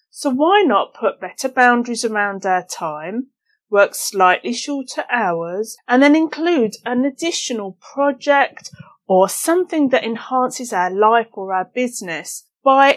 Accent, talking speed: British, 135 wpm